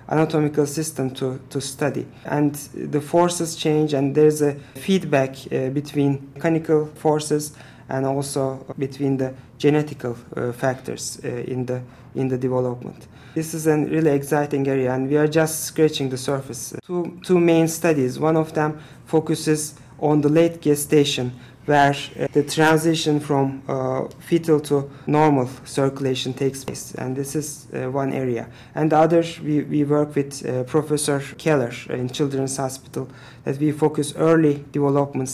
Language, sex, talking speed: English, male, 155 wpm